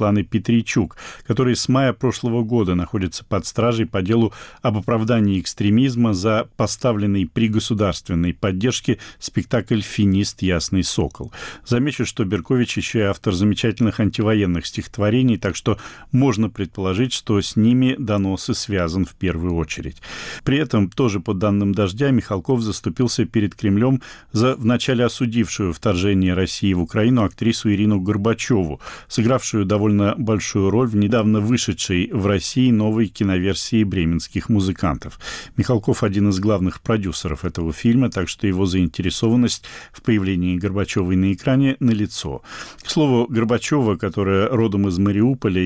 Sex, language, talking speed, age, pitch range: male, Russian, 135 wpm, 40-59, 95-120 Hz